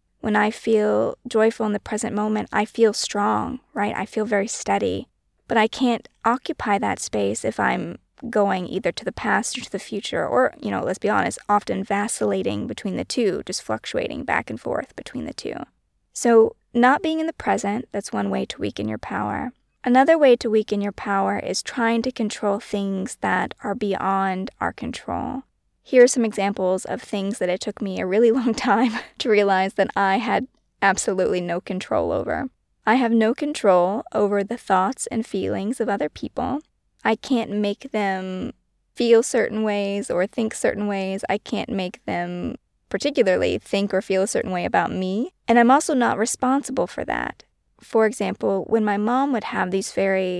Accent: American